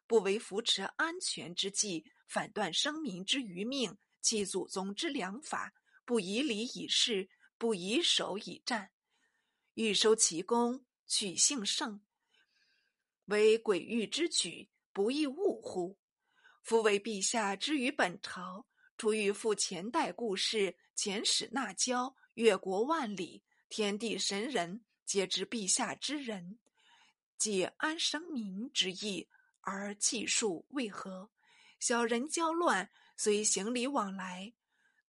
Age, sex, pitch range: 50-69, female, 200-295 Hz